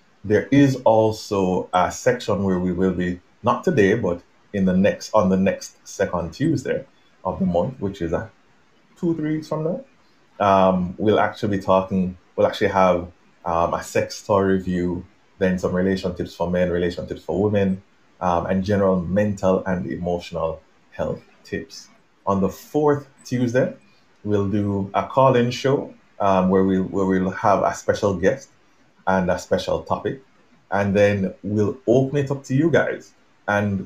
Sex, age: male, 30-49